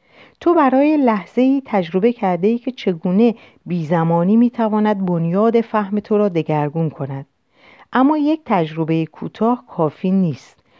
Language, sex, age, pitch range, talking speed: Persian, female, 50-69, 170-245 Hz, 115 wpm